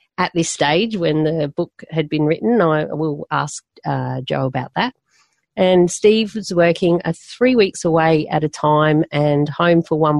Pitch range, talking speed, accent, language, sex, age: 155-195 Hz, 180 wpm, Australian, English, female, 40-59